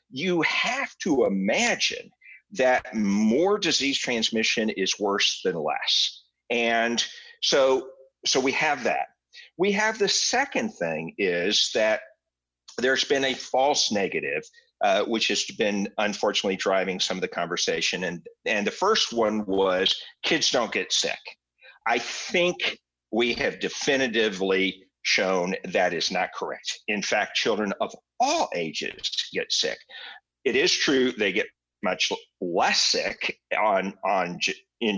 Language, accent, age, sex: English, American, 50-69, male